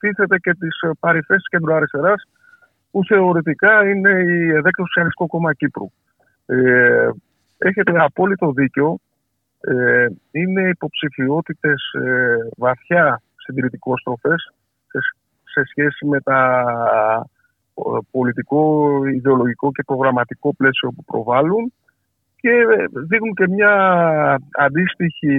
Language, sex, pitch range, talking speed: Greek, male, 135-185 Hz, 100 wpm